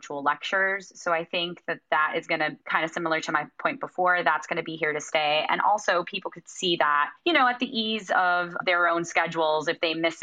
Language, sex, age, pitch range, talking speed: English, female, 20-39, 155-175 Hz, 240 wpm